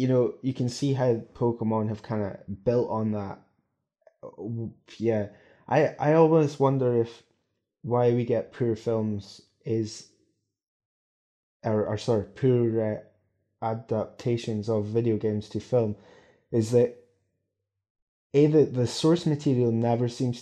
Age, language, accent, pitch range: 20-39, English, British, 110-125 Hz